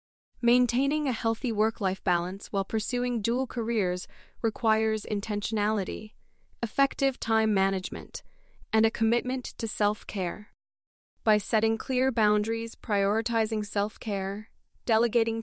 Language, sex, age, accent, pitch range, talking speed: English, female, 20-39, American, 200-235 Hz, 100 wpm